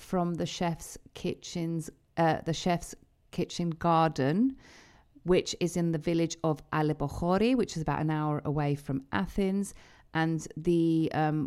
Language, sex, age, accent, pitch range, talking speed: Greek, female, 40-59, British, 150-175 Hz, 140 wpm